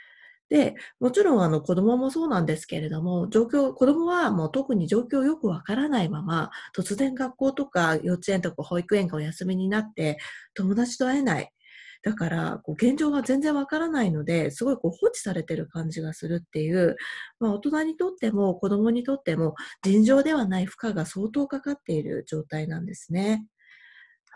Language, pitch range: Japanese, 175-275 Hz